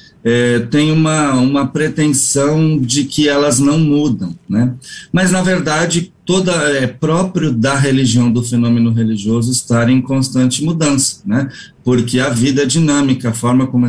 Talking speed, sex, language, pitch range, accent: 150 wpm, male, Portuguese, 120-145 Hz, Brazilian